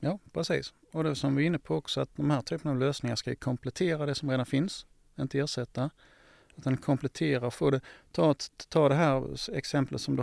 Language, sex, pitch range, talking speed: Swedish, male, 130-150 Hz, 205 wpm